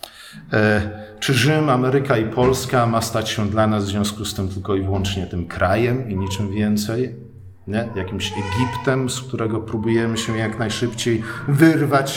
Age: 50-69